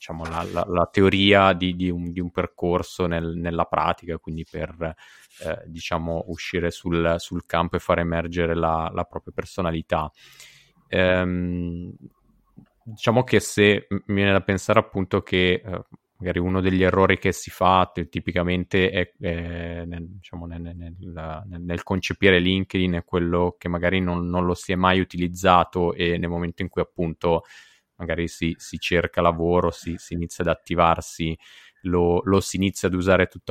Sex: male